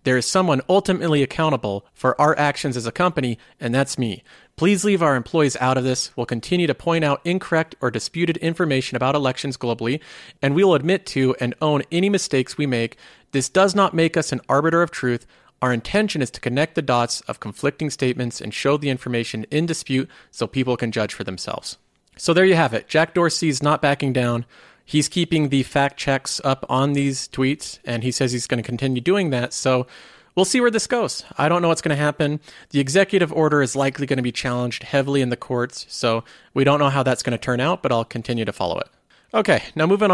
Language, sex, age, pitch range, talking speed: English, male, 40-59, 125-160 Hz, 220 wpm